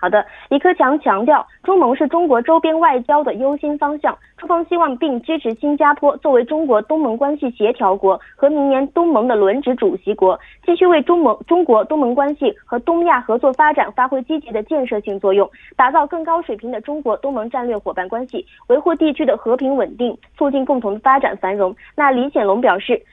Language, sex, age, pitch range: Korean, female, 20-39, 230-320 Hz